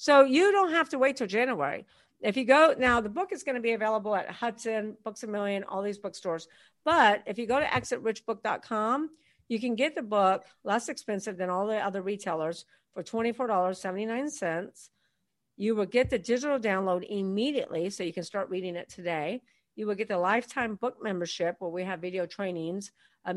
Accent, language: American, English